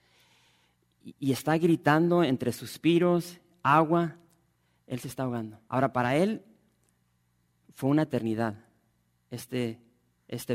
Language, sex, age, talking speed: English, male, 40-59, 100 wpm